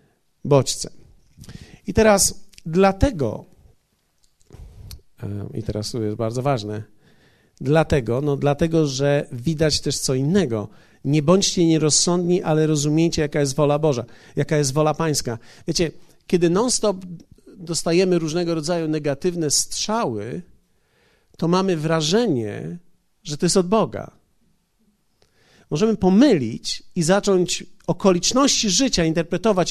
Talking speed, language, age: 110 wpm, Polish, 50-69